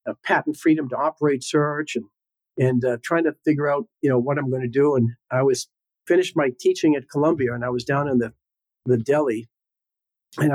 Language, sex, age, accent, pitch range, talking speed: English, male, 50-69, American, 125-175 Hz, 210 wpm